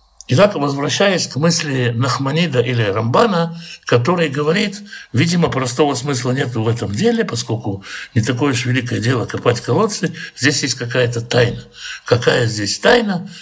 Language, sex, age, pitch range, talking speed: Russian, male, 60-79, 120-160 Hz, 140 wpm